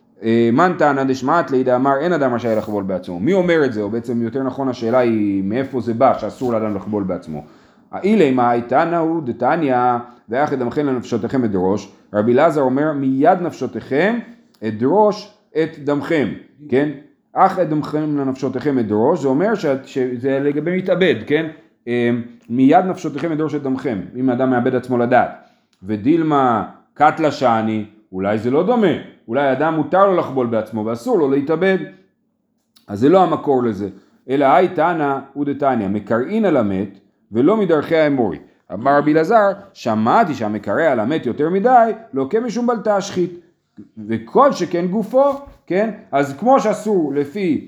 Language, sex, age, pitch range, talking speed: Hebrew, male, 30-49, 120-170 Hz, 115 wpm